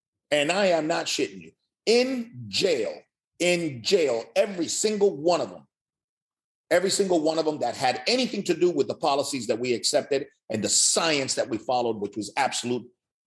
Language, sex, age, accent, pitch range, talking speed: English, male, 40-59, American, 165-245 Hz, 180 wpm